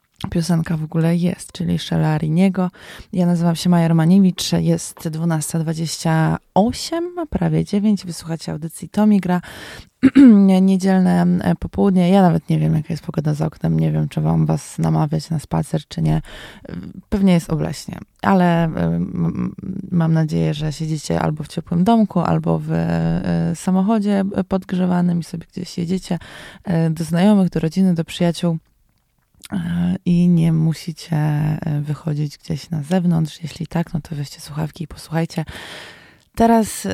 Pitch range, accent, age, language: 155-180 Hz, native, 20-39, Polish